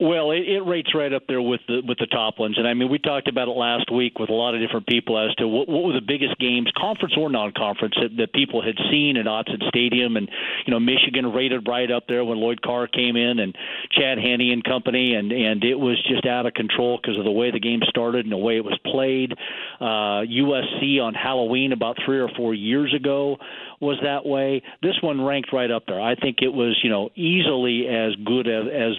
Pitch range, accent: 115-140 Hz, American